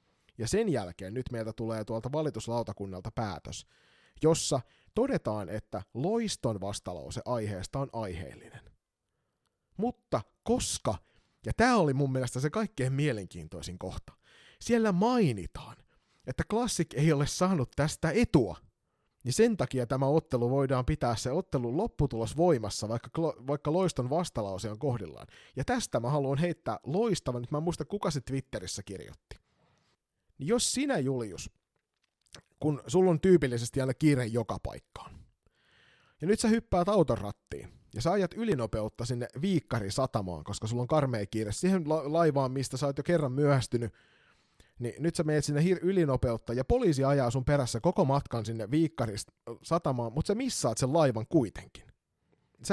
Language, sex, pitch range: Finnish, male, 115-165 Hz